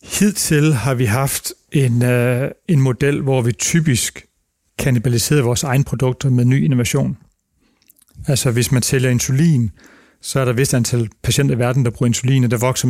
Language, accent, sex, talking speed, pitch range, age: Danish, native, male, 170 wpm, 120-140 Hz, 40-59